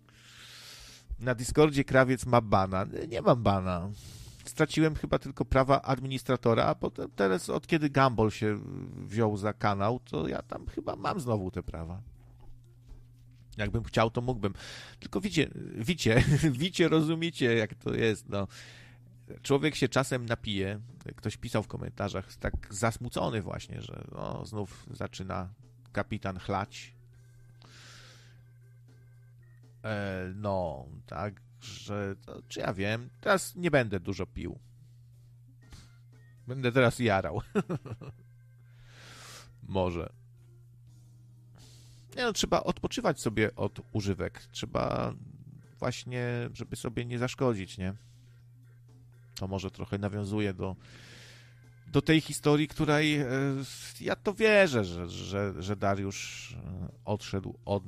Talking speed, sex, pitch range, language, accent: 115 wpm, male, 105-125 Hz, Polish, native